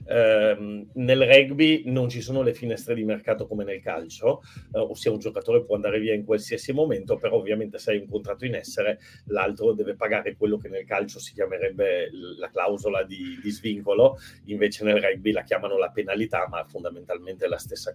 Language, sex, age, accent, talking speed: Italian, male, 40-59, native, 190 wpm